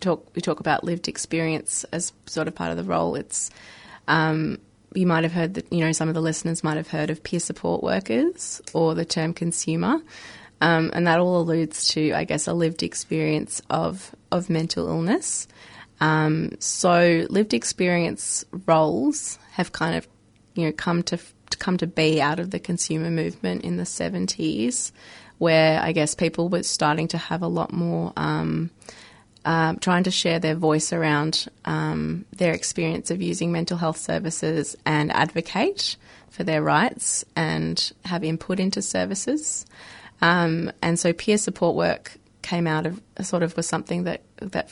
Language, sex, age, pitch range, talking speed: English, female, 20-39, 155-175 Hz, 170 wpm